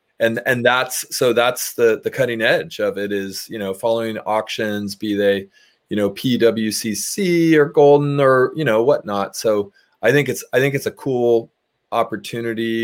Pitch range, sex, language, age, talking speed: 105-130 Hz, male, English, 30-49, 175 wpm